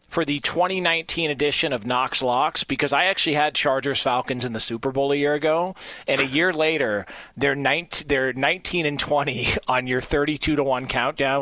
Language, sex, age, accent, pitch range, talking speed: English, male, 40-59, American, 135-175 Hz, 190 wpm